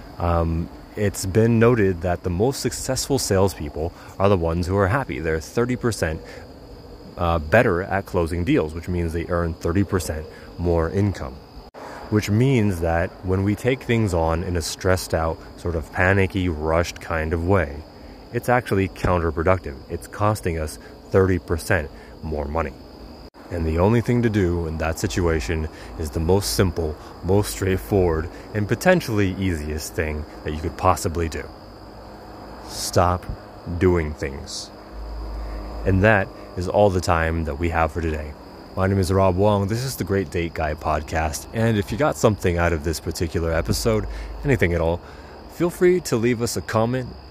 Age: 30-49